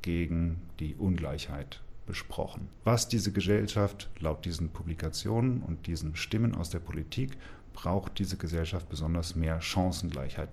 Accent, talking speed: German, 125 wpm